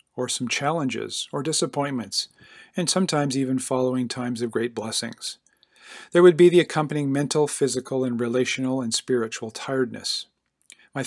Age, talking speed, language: 40-59, 140 wpm, English